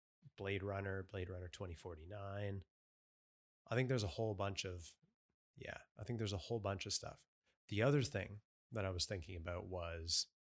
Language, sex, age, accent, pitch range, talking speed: English, male, 30-49, American, 90-110 Hz, 170 wpm